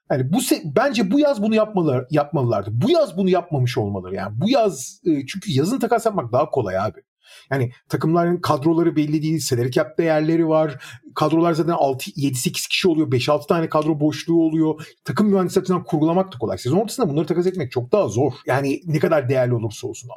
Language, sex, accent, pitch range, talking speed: Turkish, male, native, 140-205 Hz, 180 wpm